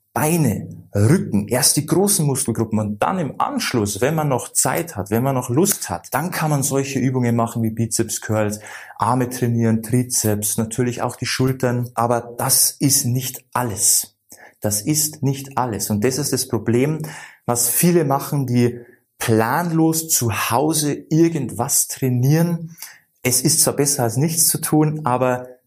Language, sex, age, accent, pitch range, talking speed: German, male, 30-49, German, 115-150 Hz, 160 wpm